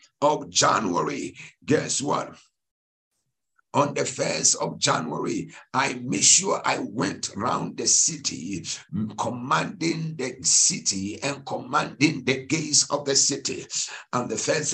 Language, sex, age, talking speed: English, male, 60-79, 120 wpm